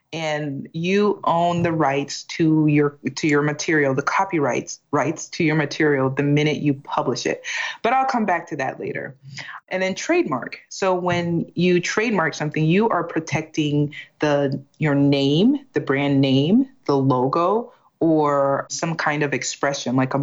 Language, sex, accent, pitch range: English, female, American, 145-180 Hz